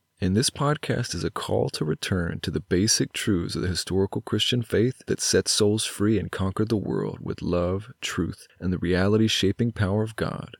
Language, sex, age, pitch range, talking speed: English, male, 30-49, 90-115 Hz, 195 wpm